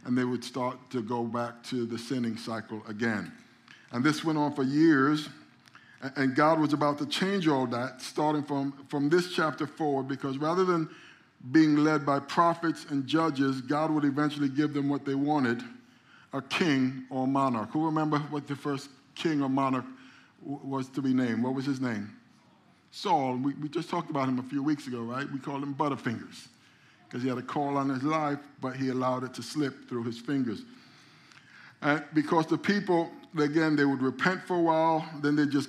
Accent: American